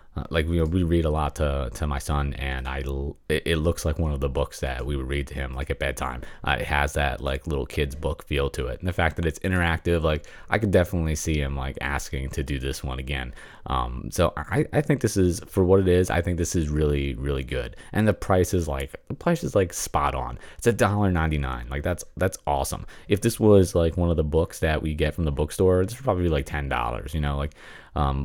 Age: 30-49